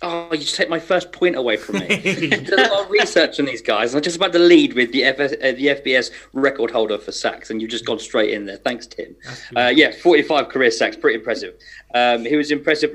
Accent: British